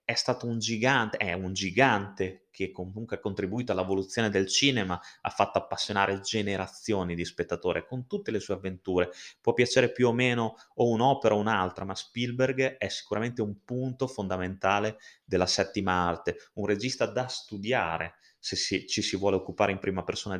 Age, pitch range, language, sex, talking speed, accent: 30-49, 95-125 Hz, Italian, male, 170 wpm, native